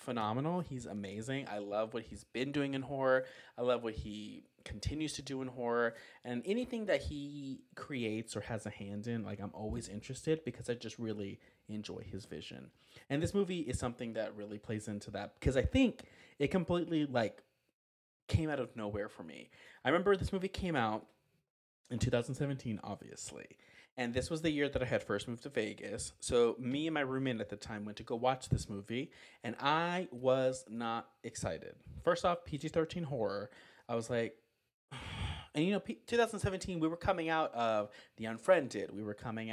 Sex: male